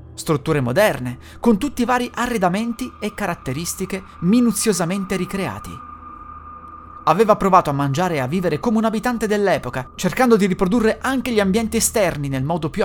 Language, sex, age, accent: Italian, male, 30-49, native